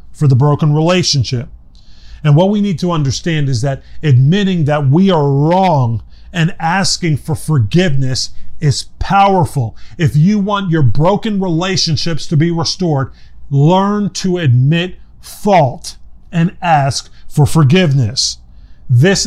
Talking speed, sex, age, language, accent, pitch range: 130 wpm, male, 40-59, English, American, 135-175 Hz